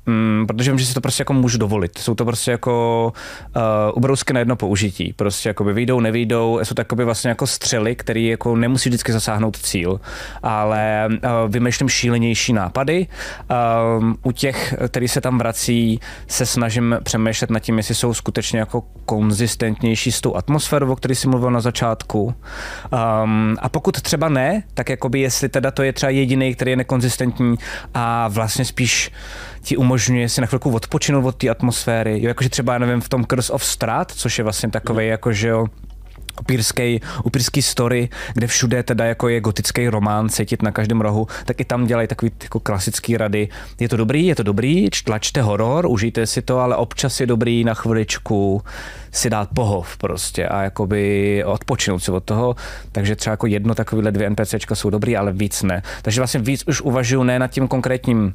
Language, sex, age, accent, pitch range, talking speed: Czech, male, 20-39, native, 110-125 Hz, 185 wpm